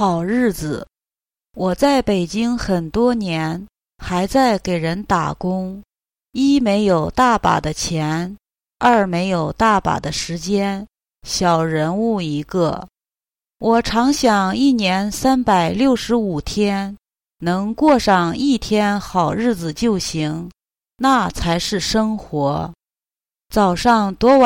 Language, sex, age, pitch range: English, female, 30-49, 175-240 Hz